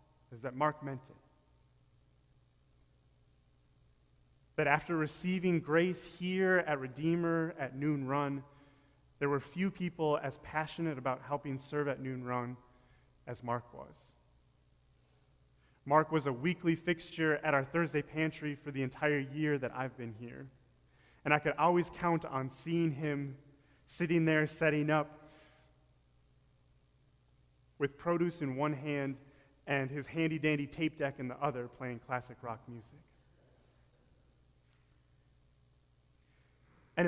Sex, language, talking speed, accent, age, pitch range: male, English, 125 wpm, American, 30-49, 125-155 Hz